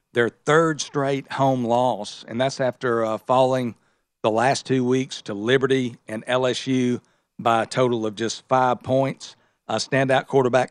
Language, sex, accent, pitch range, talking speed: English, male, American, 120-135 Hz, 155 wpm